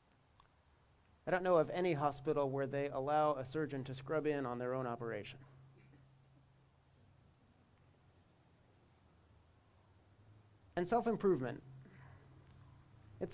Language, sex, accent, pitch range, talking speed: English, male, American, 120-150 Hz, 95 wpm